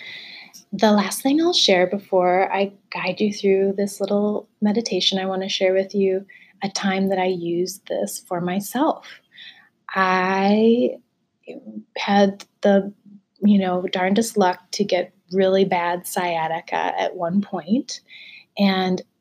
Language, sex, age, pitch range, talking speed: English, female, 20-39, 180-210 Hz, 135 wpm